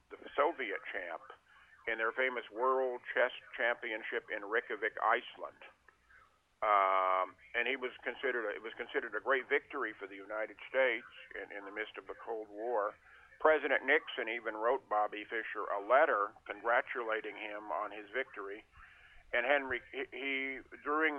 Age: 50-69